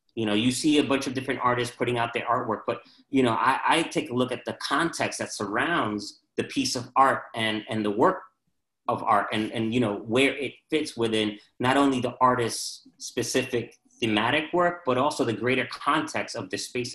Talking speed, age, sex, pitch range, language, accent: 210 wpm, 30-49, male, 115-140 Hz, English, American